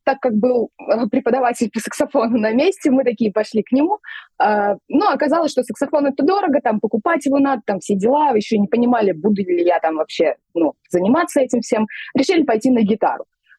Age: 20-39